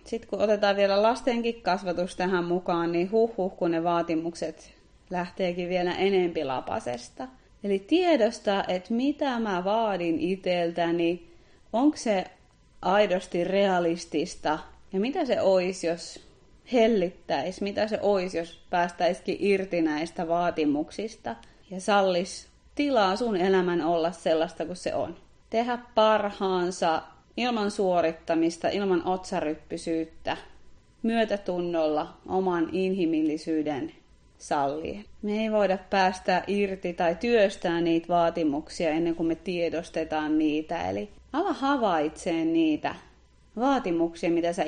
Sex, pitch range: female, 165-205 Hz